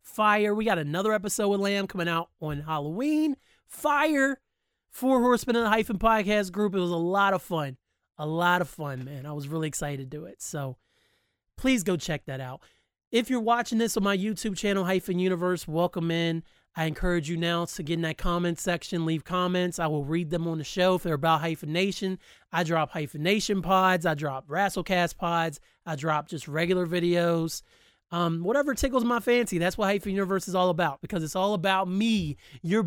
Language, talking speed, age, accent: English, 200 wpm, 30-49, American